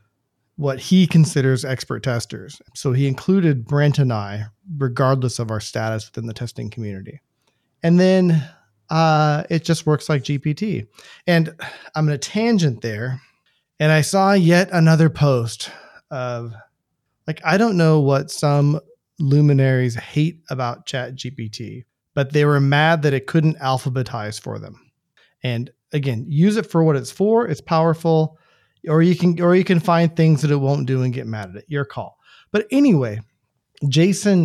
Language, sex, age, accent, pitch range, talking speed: English, male, 30-49, American, 120-160 Hz, 160 wpm